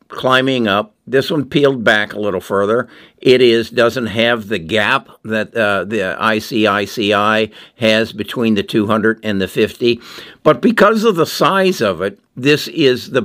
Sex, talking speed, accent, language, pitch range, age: male, 160 wpm, American, English, 105-130 Hz, 60-79